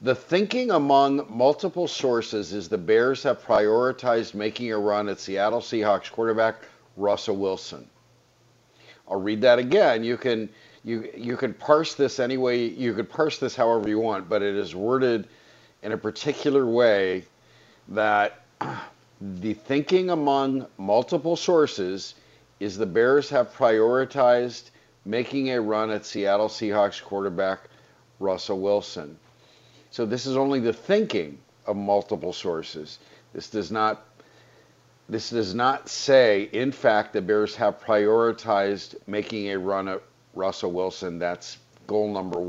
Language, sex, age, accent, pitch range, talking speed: English, male, 50-69, American, 105-130 Hz, 135 wpm